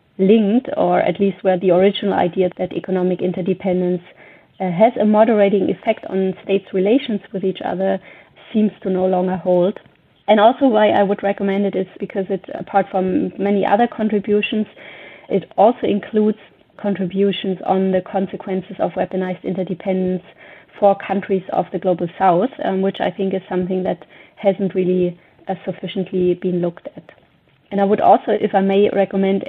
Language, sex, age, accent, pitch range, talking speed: English, female, 30-49, German, 185-200 Hz, 160 wpm